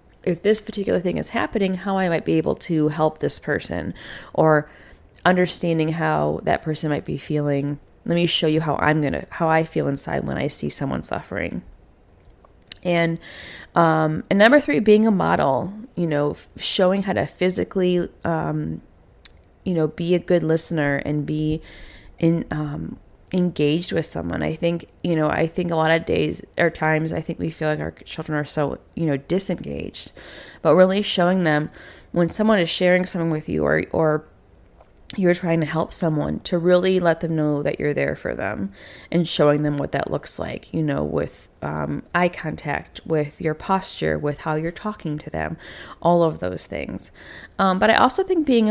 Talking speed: 185 wpm